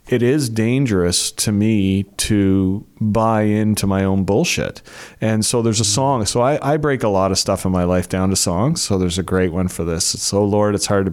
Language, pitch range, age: English, 95-115 Hz, 30-49